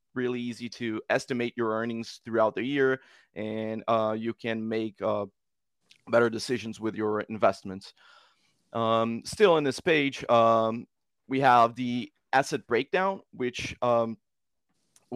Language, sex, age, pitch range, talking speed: English, male, 30-49, 110-125 Hz, 130 wpm